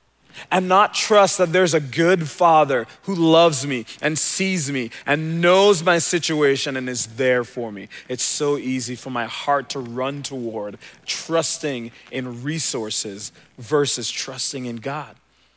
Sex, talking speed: male, 150 wpm